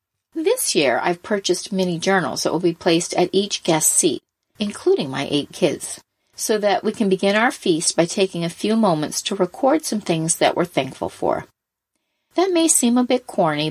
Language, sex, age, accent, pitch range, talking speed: English, female, 40-59, American, 165-225 Hz, 195 wpm